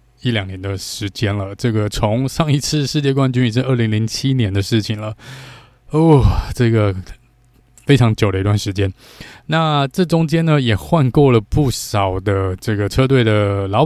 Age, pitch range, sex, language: 20-39, 105-130 Hz, male, Chinese